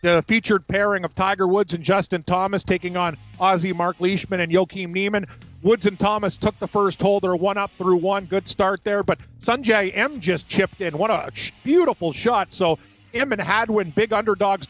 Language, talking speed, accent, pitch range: English, 195 wpm, American, 180-205 Hz